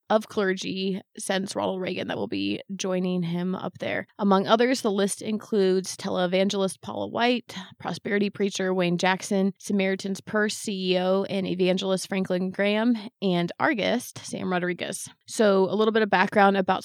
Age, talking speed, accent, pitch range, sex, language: 20-39, 150 wpm, American, 180-205 Hz, female, English